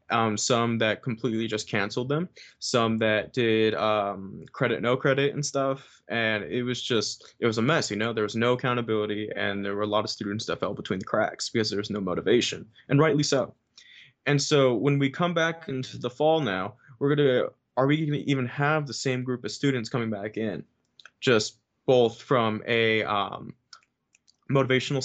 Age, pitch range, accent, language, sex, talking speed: 20-39, 110-130 Hz, American, English, male, 195 wpm